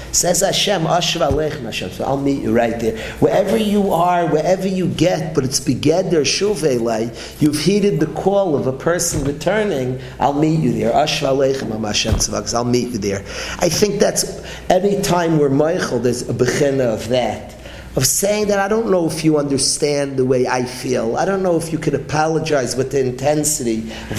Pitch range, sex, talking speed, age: 125-180 Hz, male, 165 wpm, 40-59